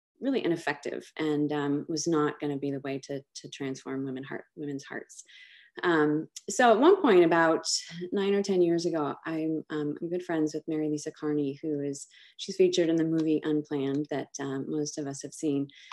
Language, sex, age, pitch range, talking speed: English, female, 20-39, 150-175 Hz, 195 wpm